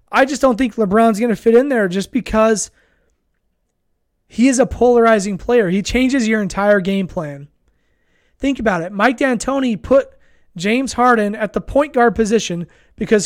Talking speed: 165 wpm